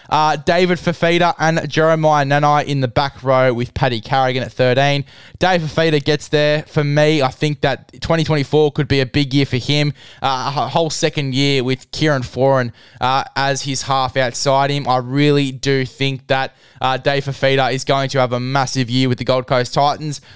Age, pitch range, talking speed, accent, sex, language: 20-39, 130-150 Hz, 195 wpm, Australian, male, English